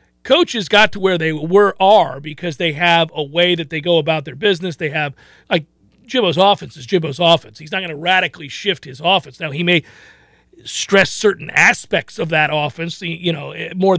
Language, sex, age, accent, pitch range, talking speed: English, male, 40-59, American, 165-205 Hz, 195 wpm